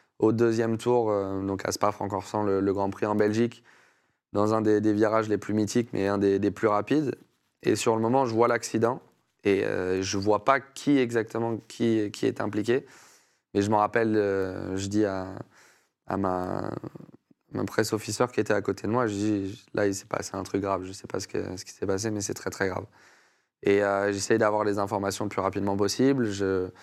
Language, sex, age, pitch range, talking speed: French, male, 20-39, 100-115 Hz, 225 wpm